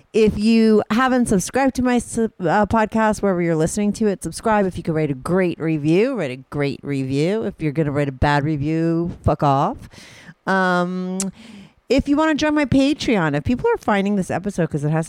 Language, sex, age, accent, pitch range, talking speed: English, female, 40-59, American, 150-210 Hz, 205 wpm